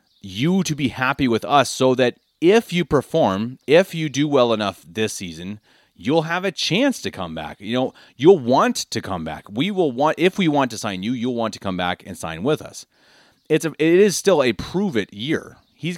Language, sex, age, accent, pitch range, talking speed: English, male, 30-49, American, 105-155 Hz, 225 wpm